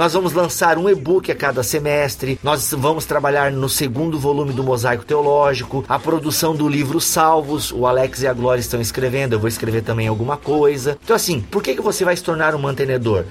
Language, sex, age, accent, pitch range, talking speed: Portuguese, male, 30-49, Brazilian, 135-190 Hz, 205 wpm